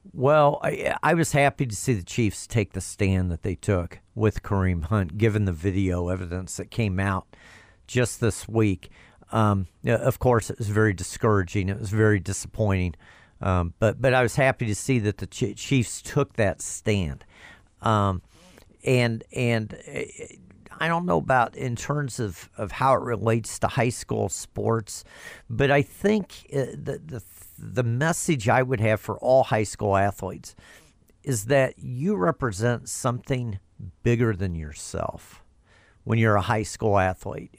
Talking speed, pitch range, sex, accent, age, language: 160 wpm, 95-120 Hz, male, American, 50-69, English